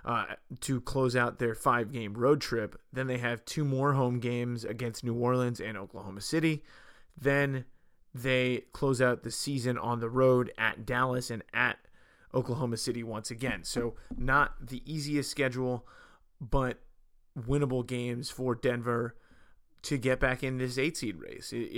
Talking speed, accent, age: 155 wpm, American, 30-49